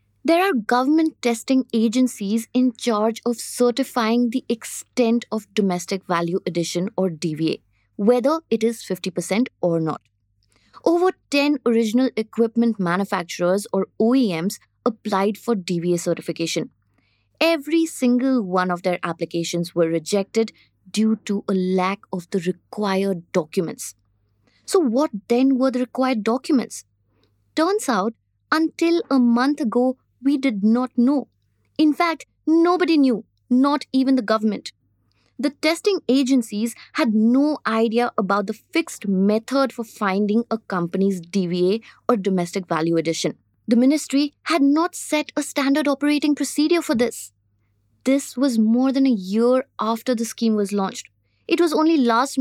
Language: English